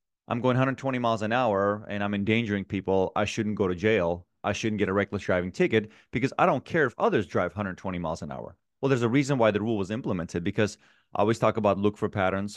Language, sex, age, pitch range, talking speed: English, male, 30-49, 95-115 Hz, 240 wpm